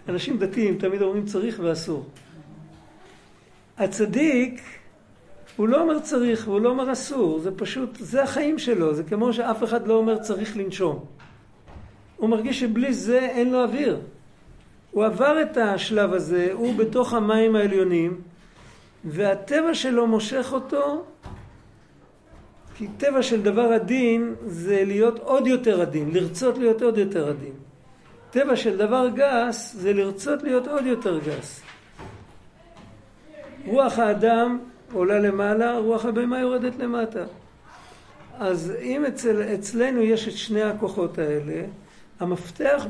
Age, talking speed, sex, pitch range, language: 50-69, 125 wpm, male, 190-245 Hz, Hebrew